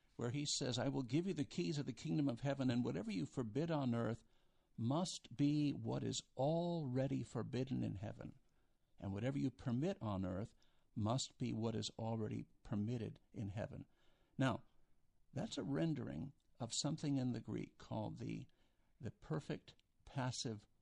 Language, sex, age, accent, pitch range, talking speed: English, male, 60-79, American, 110-140 Hz, 160 wpm